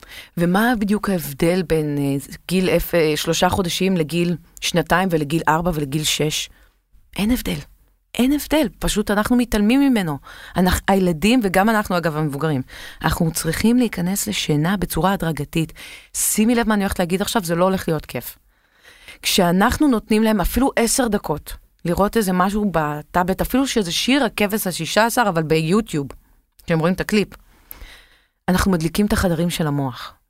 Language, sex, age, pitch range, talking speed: Hebrew, female, 30-49, 170-245 Hz, 150 wpm